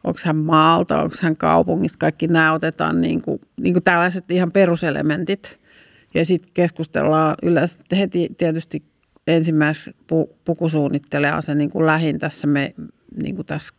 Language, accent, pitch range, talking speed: Finnish, native, 155-180 Hz, 150 wpm